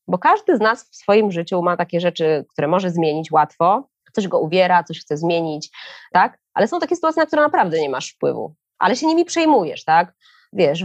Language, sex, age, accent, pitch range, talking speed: Polish, female, 20-39, native, 180-235 Hz, 205 wpm